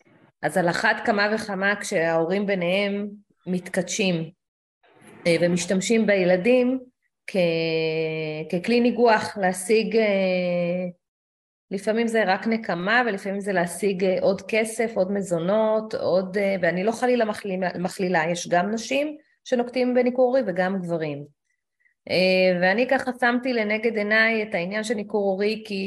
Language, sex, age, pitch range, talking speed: Hebrew, female, 30-49, 180-235 Hz, 115 wpm